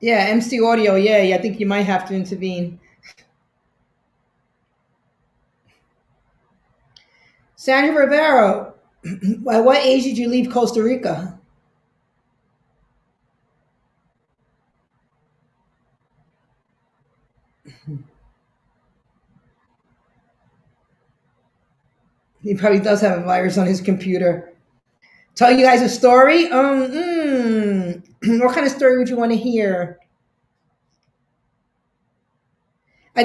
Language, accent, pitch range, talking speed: English, American, 190-250 Hz, 85 wpm